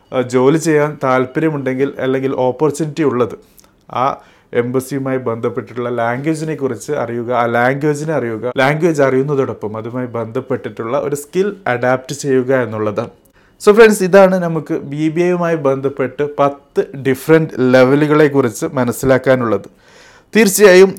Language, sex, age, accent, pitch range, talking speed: Malayalam, male, 30-49, native, 125-150 Hz, 105 wpm